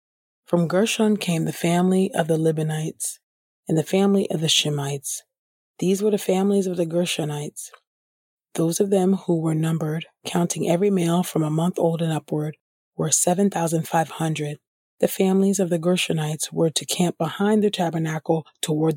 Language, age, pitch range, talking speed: English, 30-49, 155-190 Hz, 160 wpm